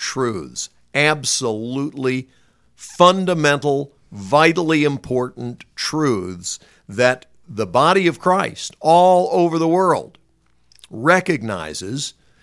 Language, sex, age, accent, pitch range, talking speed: English, male, 50-69, American, 120-175 Hz, 75 wpm